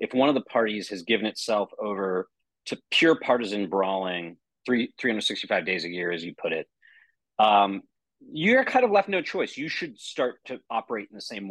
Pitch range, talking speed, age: 100-145 Hz, 195 wpm, 30-49